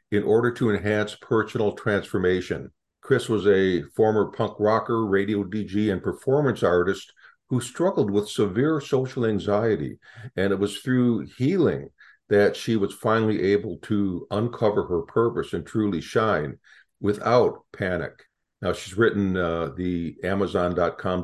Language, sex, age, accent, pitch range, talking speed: English, male, 50-69, American, 100-115 Hz, 135 wpm